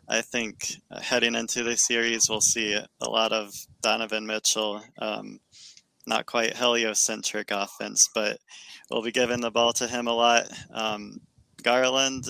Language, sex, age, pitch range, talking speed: English, male, 20-39, 110-125 Hz, 145 wpm